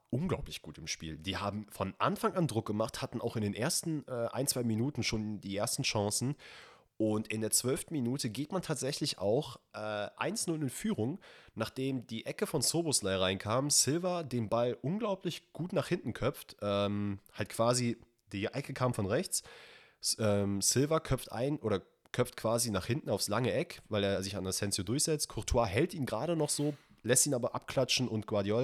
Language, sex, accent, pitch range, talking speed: German, male, German, 100-145 Hz, 190 wpm